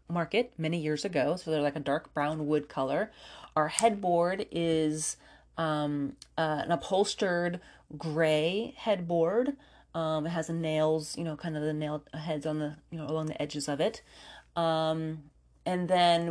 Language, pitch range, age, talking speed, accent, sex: English, 155-185 Hz, 30-49, 165 wpm, American, female